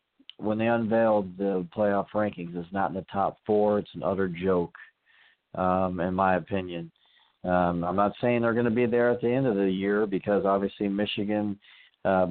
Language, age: English, 40-59